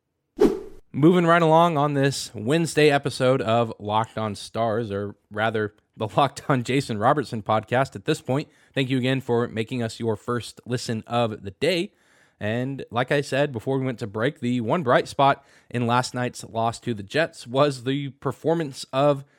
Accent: American